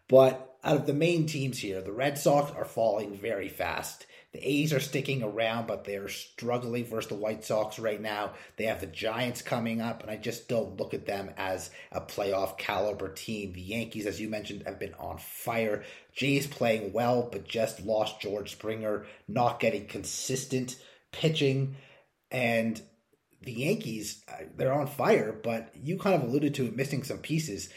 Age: 30-49